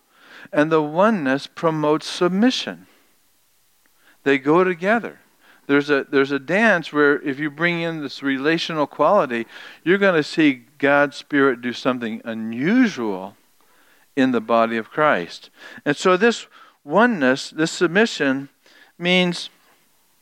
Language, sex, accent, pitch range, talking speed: English, male, American, 140-180 Hz, 125 wpm